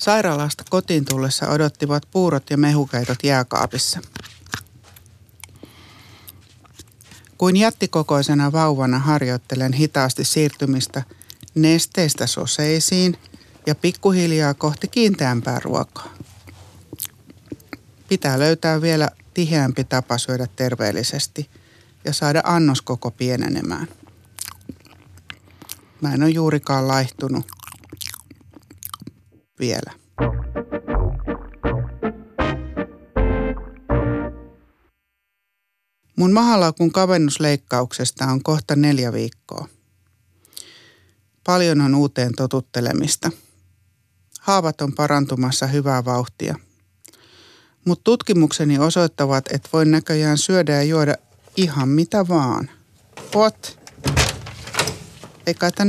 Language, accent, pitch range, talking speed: Finnish, native, 115-160 Hz, 70 wpm